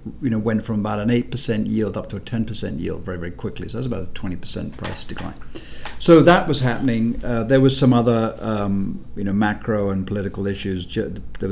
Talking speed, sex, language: 225 wpm, male, English